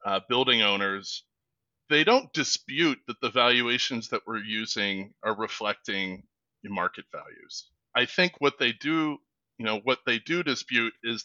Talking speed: 155 wpm